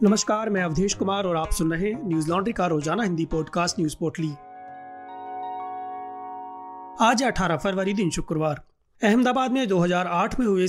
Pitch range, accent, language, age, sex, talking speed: 170-205 Hz, native, Hindi, 30-49, male, 145 wpm